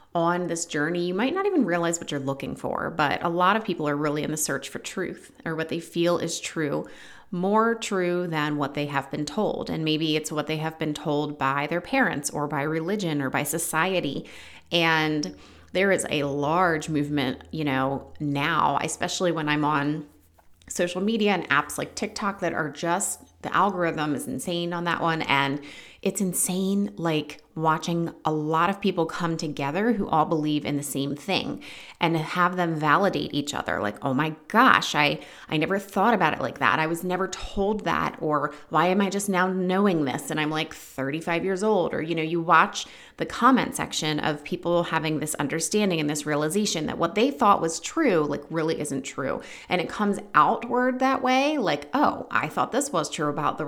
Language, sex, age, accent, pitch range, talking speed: English, female, 30-49, American, 150-185 Hz, 200 wpm